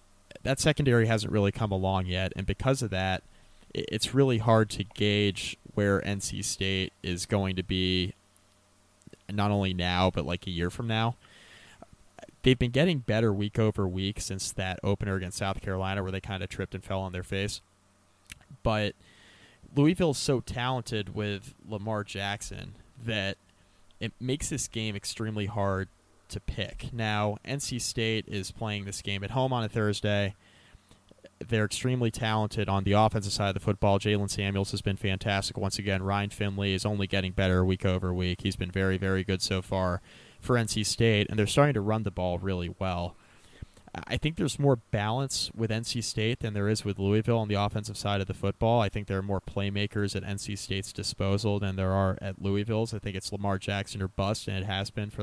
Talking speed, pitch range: 190 wpm, 95-110 Hz